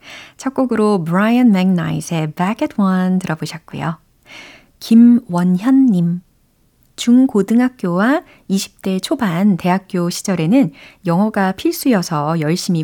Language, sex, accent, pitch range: Korean, female, native, 165-230 Hz